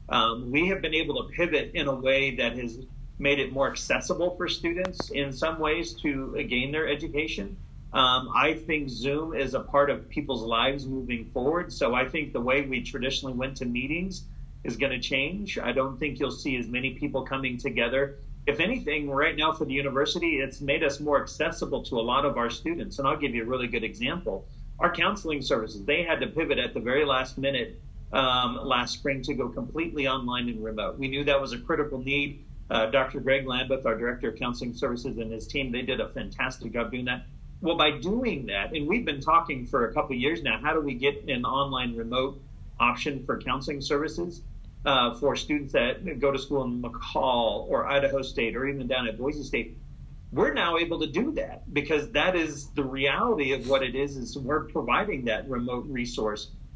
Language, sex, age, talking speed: English, male, 40-59, 210 wpm